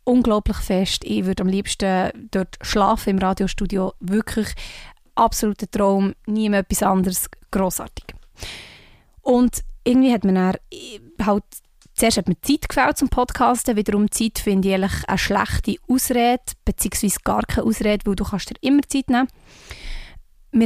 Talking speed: 145 wpm